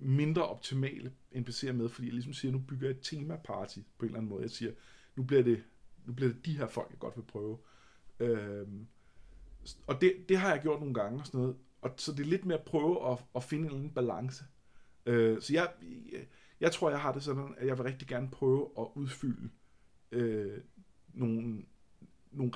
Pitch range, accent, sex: 115-140 Hz, native, male